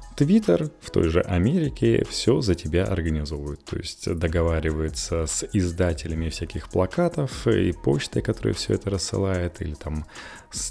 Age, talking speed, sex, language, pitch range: 20-39, 140 wpm, male, Russian, 85-105 Hz